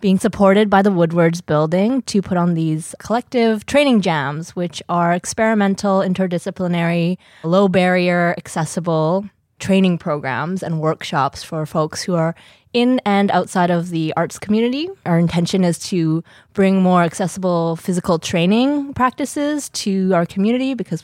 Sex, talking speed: female, 135 wpm